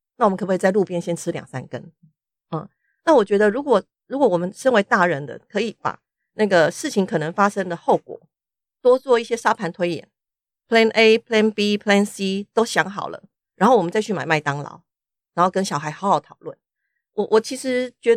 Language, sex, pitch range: Chinese, female, 160-220 Hz